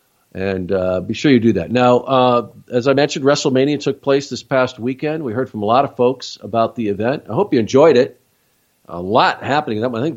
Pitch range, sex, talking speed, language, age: 95-120 Hz, male, 225 wpm, English, 50-69